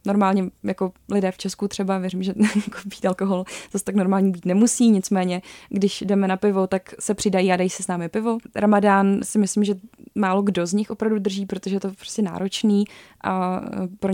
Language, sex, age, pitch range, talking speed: Czech, female, 20-39, 190-210 Hz, 205 wpm